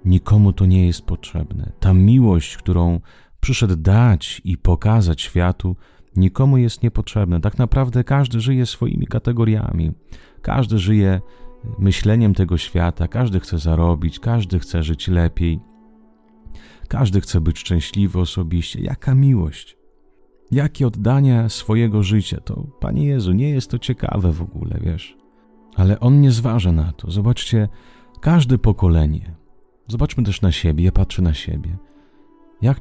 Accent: Polish